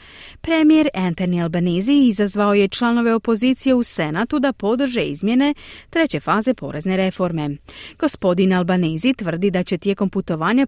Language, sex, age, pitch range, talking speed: Croatian, female, 30-49, 175-240 Hz, 130 wpm